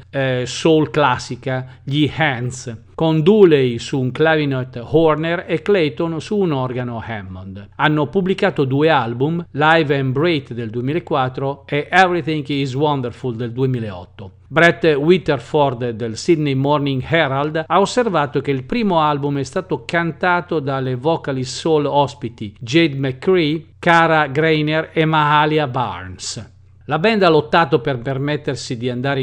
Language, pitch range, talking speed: Italian, 130-165 Hz, 135 wpm